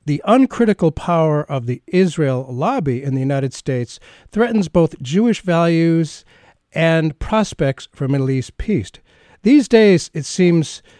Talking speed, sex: 135 wpm, male